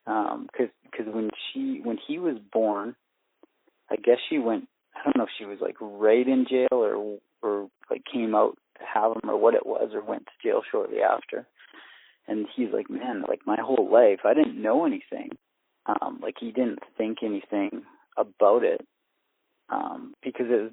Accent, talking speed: American, 190 wpm